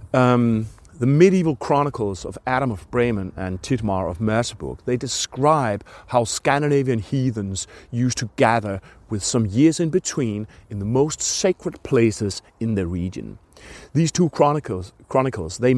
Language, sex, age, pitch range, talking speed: English, male, 40-59, 100-125 Hz, 145 wpm